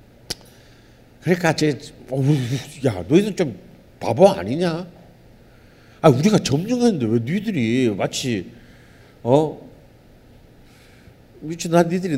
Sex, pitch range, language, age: male, 110-170 Hz, Korean, 50-69